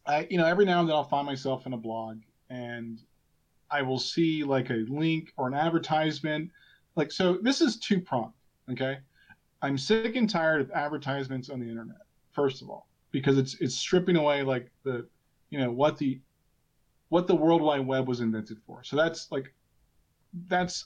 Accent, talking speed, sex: American, 185 wpm, male